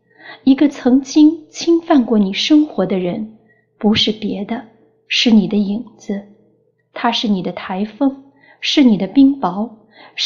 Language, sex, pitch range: Chinese, female, 205-255 Hz